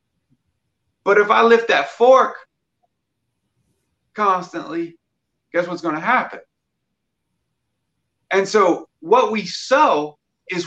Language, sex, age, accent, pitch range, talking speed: English, male, 40-59, American, 175-250 Hz, 95 wpm